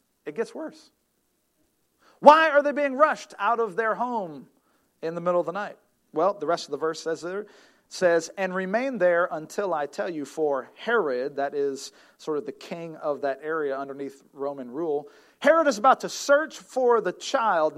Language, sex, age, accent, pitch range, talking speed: English, male, 40-59, American, 165-220 Hz, 190 wpm